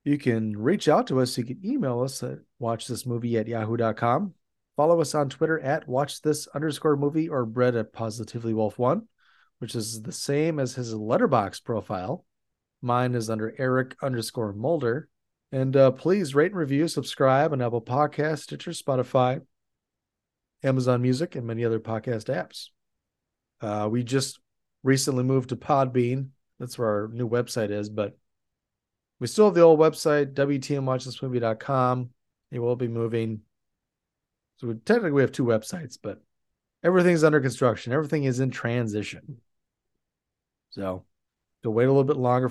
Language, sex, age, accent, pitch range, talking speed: English, male, 30-49, American, 115-140 Hz, 150 wpm